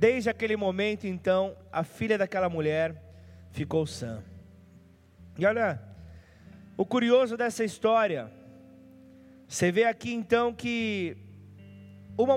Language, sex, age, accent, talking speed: Portuguese, male, 20-39, Brazilian, 105 wpm